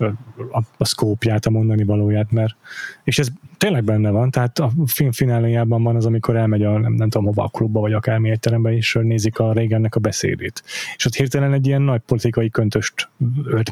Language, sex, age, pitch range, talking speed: Hungarian, male, 20-39, 110-130 Hz, 200 wpm